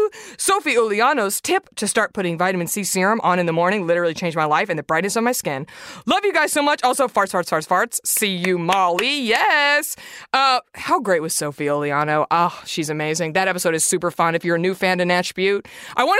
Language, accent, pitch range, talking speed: English, American, 190-290 Hz, 225 wpm